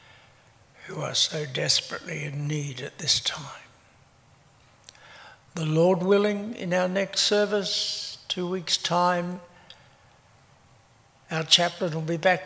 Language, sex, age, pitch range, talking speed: English, male, 60-79, 145-185 Hz, 115 wpm